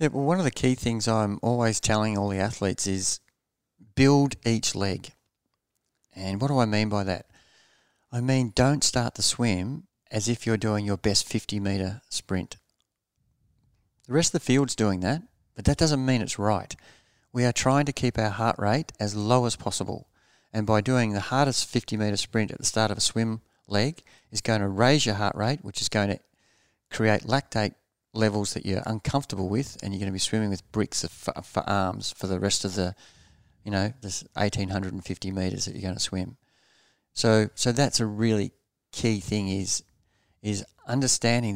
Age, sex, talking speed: 40-59, male, 190 wpm